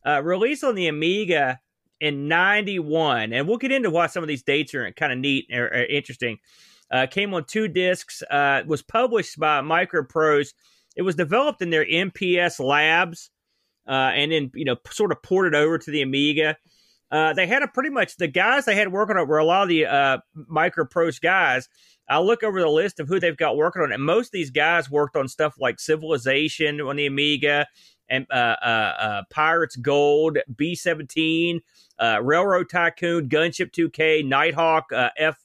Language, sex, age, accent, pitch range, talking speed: English, male, 30-49, American, 140-175 Hz, 190 wpm